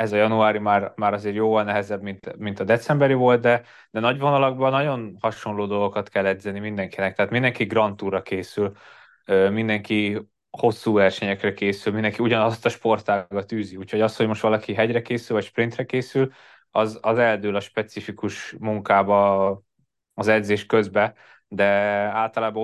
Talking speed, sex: 150 wpm, male